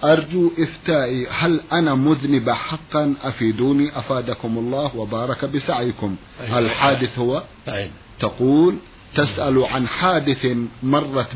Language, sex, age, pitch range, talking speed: Arabic, male, 50-69, 125-155 Hz, 95 wpm